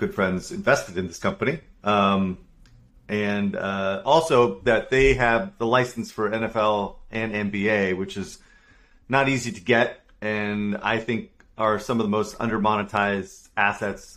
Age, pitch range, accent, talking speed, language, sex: 40-59, 100-125 Hz, American, 150 wpm, English, male